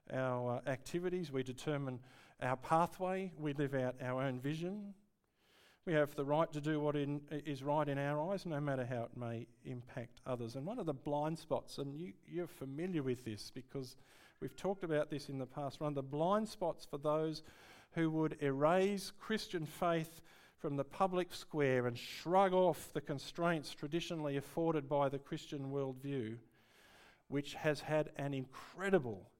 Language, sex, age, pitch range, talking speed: English, male, 50-69, 125-155 Hz, 170 wpm